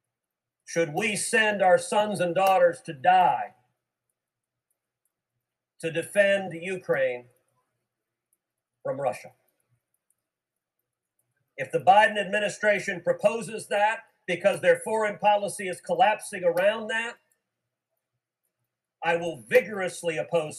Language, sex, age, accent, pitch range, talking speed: English, male, 50-69, American, 165-235 Hz, 95 wpm